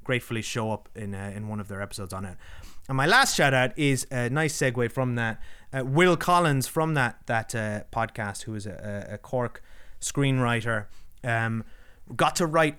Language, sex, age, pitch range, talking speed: English, male, 30-49, 110-140 Hz, 190 wpm